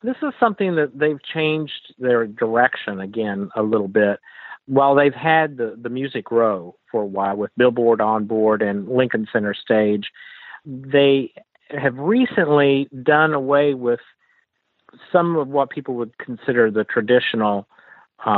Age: 50-69